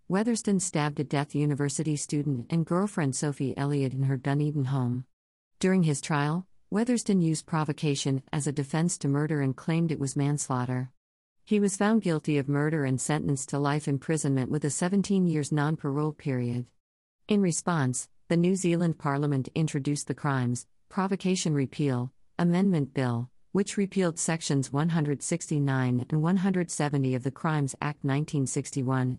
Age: 50-69